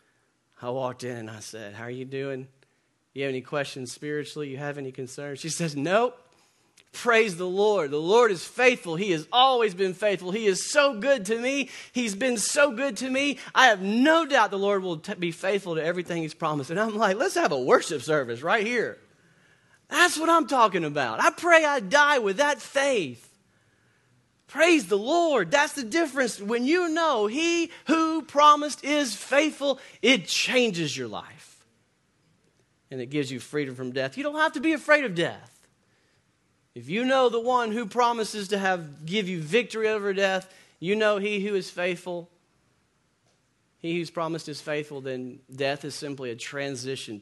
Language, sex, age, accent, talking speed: English, male, 40-59, American, 185 wpm